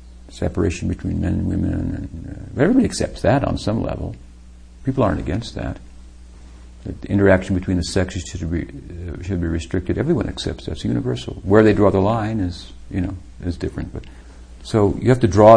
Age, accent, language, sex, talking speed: 50-69, American, English, male, 195 wpm